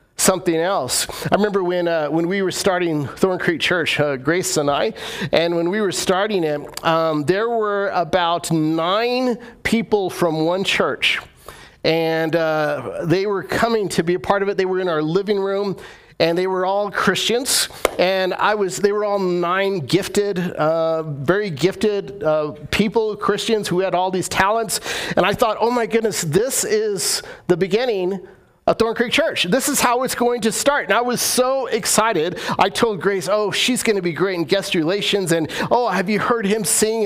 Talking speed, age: 190 wpm, 40-59